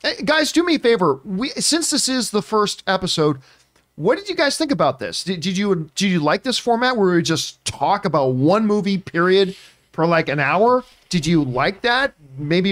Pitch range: 160-205 Hz